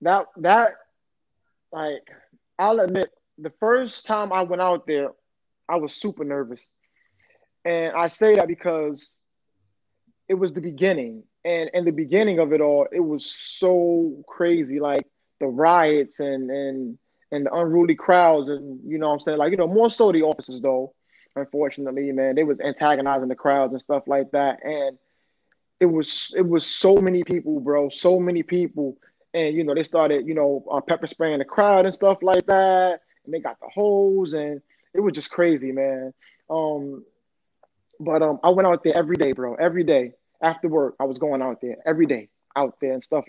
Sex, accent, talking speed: male, American, 185 wpm